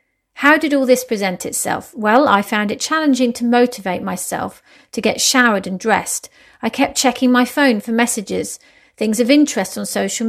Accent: British